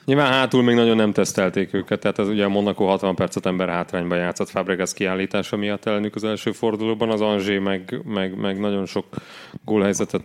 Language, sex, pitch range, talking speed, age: Hungarian, male, 100-120 Hz, 175 wpm, 30-49